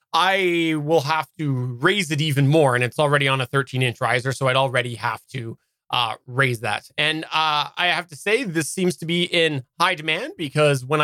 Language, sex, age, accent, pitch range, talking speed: English, male, 20-39, American, 135-185 Hz, 205 wpm